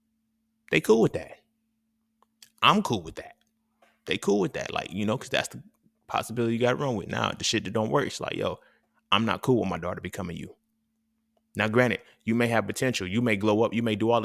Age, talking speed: 20-39, 230 wpm